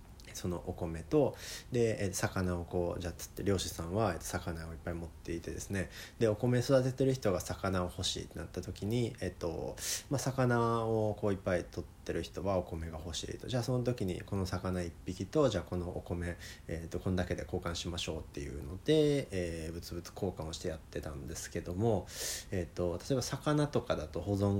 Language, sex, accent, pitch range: Japanese, male, native, 85-110 Hz